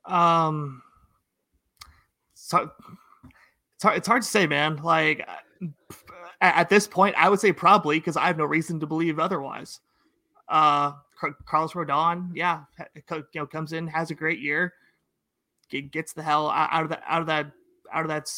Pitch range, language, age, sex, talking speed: 155-190 Hz, English, 30-49, male, 175 wpm